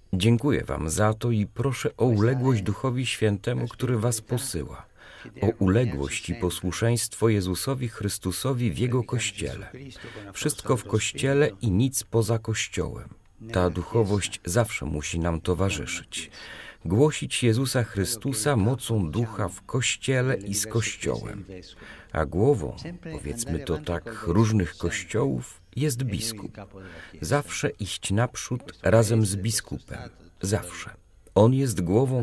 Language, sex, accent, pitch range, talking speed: Polish, male, native, 90-120 Hz, 120 wpm